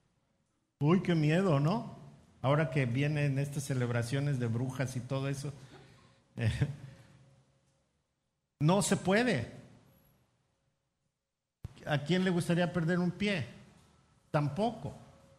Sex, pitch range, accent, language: male, 135-165 Hz, Mexican, Spanish